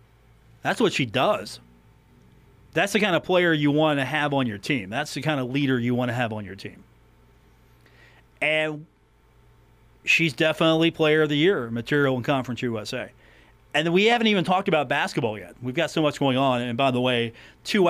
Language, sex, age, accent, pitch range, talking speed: English, male, 40-59, American, 125-165 Hz, 195 wpm